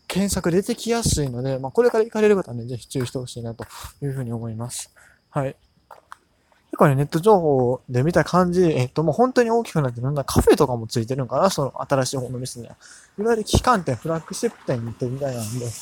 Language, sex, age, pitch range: Japanese, male, 20-39, 125-170 Hz